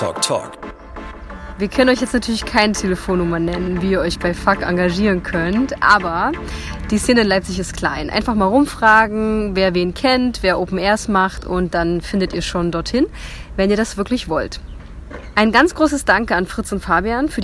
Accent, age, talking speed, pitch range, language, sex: German, 20-39, 180 wpm, 180-240 Hz, German, female